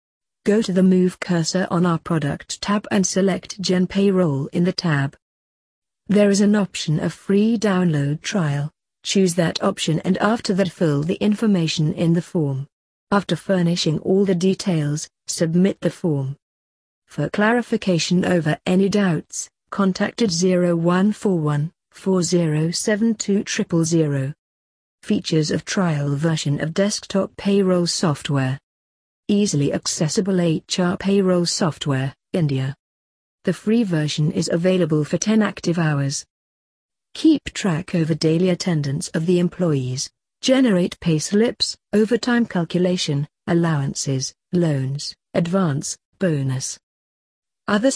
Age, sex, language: 40-59, female, English